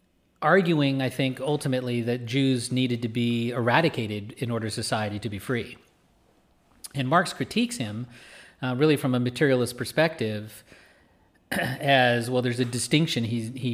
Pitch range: 105-130 Hz